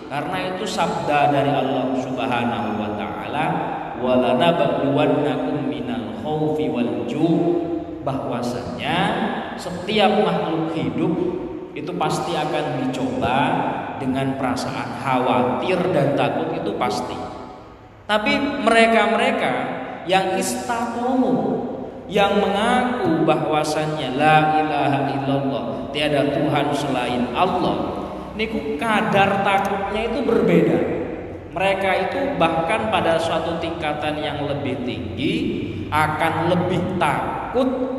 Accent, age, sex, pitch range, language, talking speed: native, 20-39, male, 130-190 Hz, Indonesian, 85 wpm